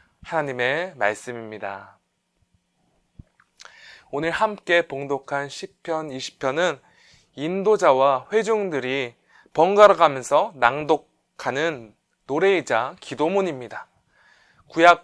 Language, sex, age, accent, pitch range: Korean, male, 20-39, native, 140-190 Hz